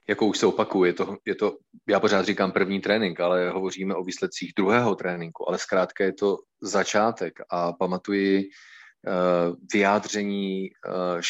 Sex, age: male, 30-49